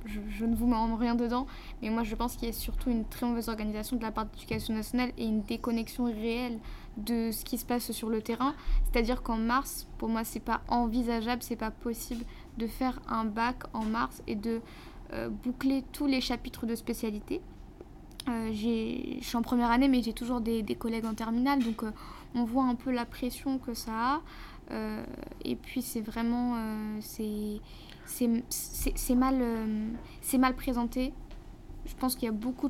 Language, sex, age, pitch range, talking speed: French, female, 10-29, 225-255 Hz, 200 wpm